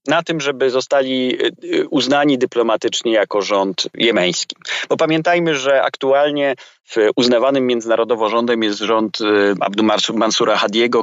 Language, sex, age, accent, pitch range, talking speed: Polish, male, 30-49, native, 110-145 Hz, 120 wpm